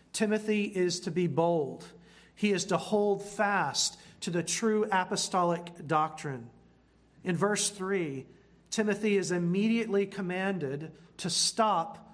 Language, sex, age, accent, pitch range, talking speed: English, male, 40-59, American, 165-205 Hz, 120 wpm